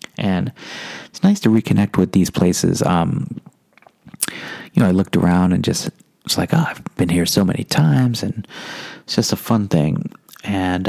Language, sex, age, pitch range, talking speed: English, male, 30-49, 90-120 Hz, 175 wpm